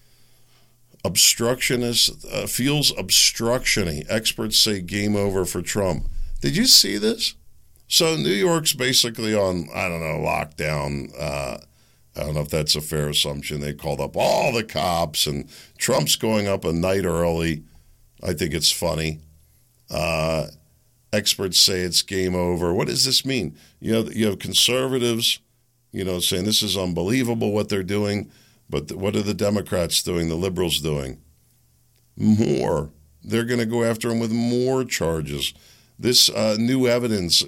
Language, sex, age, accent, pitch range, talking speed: English, male, 50-69, American, 80-120 Hz, 150 wpm